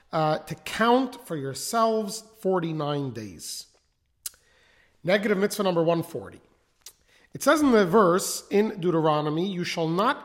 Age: 40-59